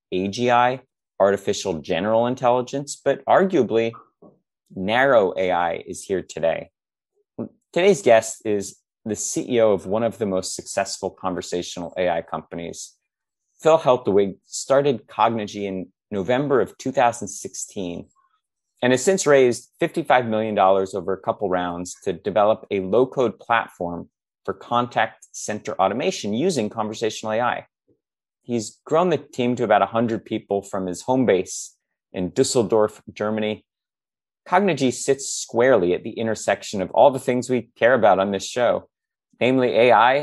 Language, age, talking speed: English, 30-49, 130 wpm